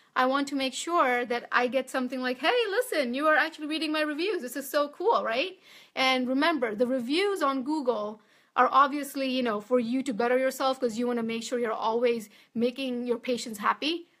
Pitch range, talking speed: 240-290 Hz, 210 wpm